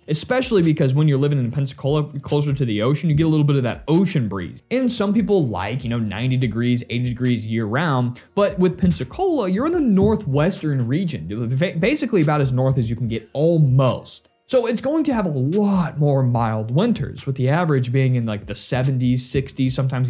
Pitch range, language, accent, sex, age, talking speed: 125-180 Hz, English, American, male, 20-39, 205 wpm